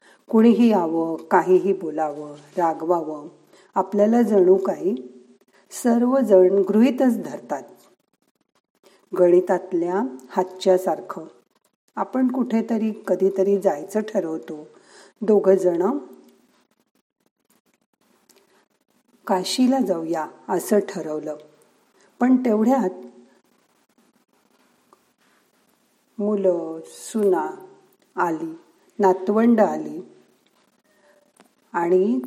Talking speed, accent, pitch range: 60 wpm, native, 180-225 Hz